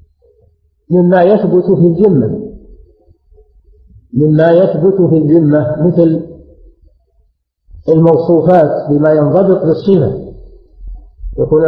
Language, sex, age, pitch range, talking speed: Arabic, male, 50-69, 125-180 Hz, 65 wpm